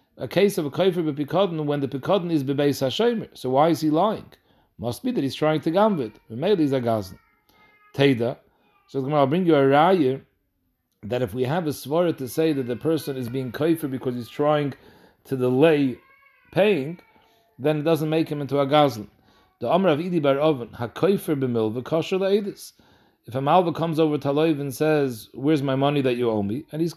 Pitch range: 135-170 Hz